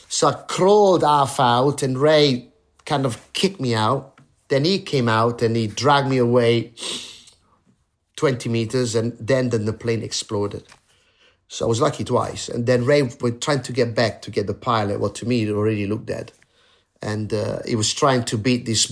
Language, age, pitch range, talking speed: English, 30-49, 105-130 Hz, 190 wpm